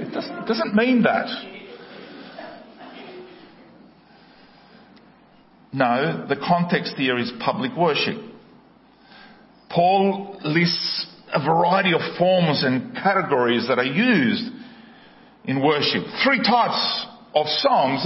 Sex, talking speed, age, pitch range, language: male, 95 wpm, 50-69, 165-235 Hz, English